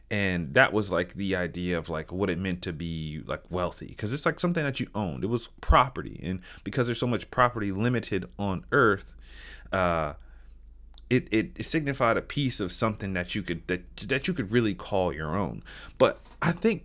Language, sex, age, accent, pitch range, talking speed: English, male, 30-49, American, 90-125 Hz, 205 wpm